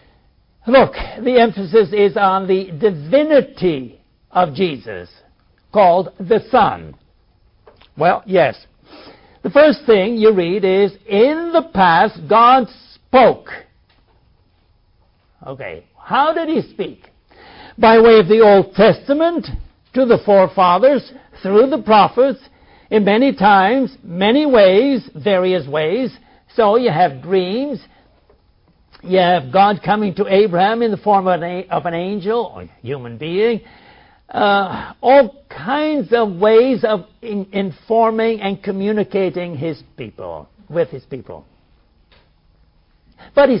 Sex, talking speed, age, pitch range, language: male, 120 wpm, 60-79, 185-240 Hz, English